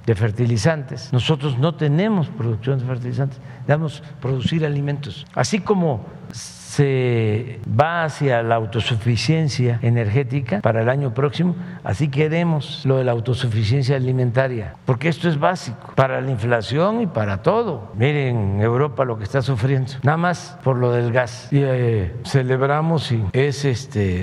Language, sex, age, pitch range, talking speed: Spanish, male, 60-79, 120-150 Hz, 145 wpm